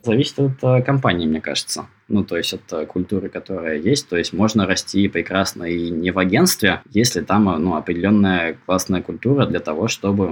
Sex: male